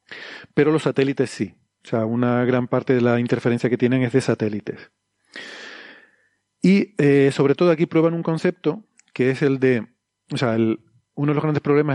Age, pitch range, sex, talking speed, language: 40-59, 125-150 Hz, male, 180 wpm, Spanish